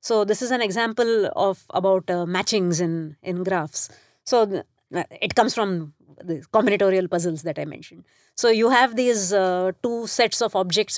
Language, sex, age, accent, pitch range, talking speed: English, female, 30-49, Indian, 195-245 Hz, 175 wpm